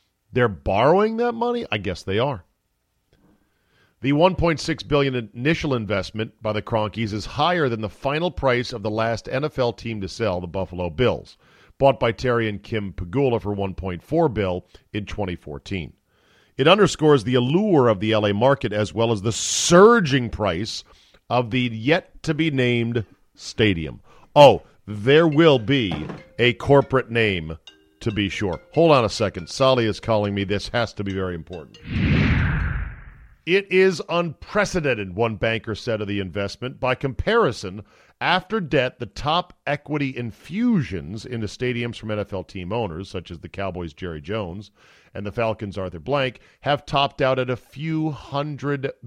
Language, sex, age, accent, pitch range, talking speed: English, male, 40-59, American, 100-140 Hz, 155 wpm